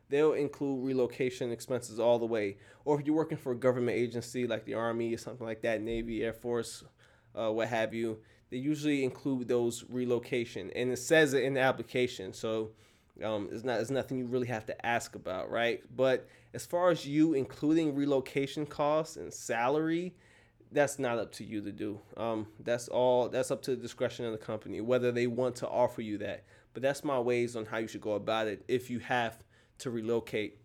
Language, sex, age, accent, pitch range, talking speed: English, male, 20-39, American, 115-130 Hz, 205 wpm